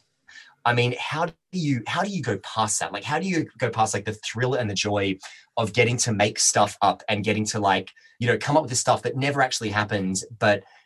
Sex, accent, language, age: male, Australian, English, 20-39